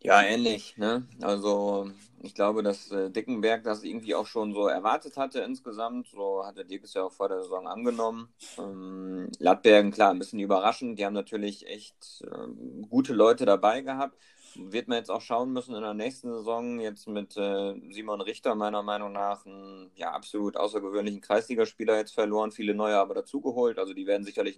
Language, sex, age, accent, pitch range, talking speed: German, male, 30-49, German, 100-115 Hz, 185 wpm